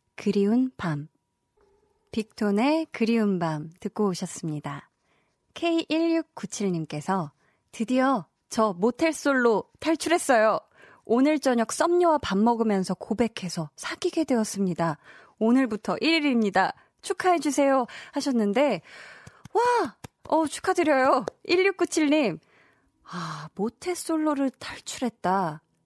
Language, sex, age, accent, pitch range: Korean, female, 20-39, native, 190-285 Hz